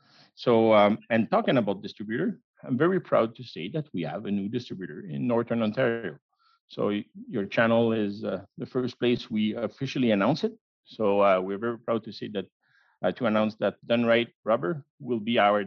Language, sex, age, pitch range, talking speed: English, male, 50-69, 105-135 Hz, 190 wpm